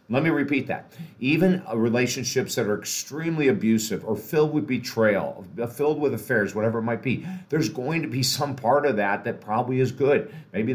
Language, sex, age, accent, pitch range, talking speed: English, male, 50-69, American, 110-140 Hz, 190 wpm